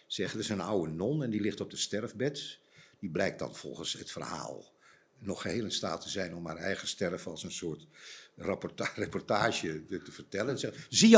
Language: Dutch